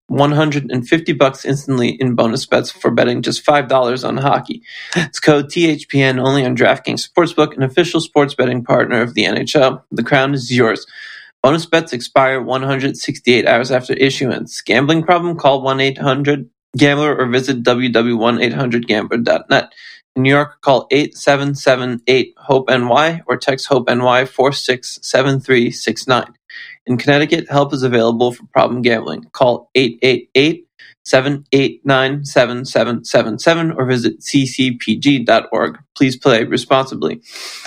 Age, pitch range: 20-39, 125-145 Hz